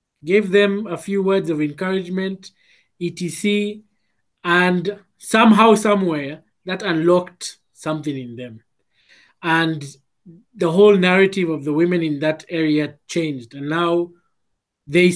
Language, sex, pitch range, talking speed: English, male, 155-185 Hz, 120 wpm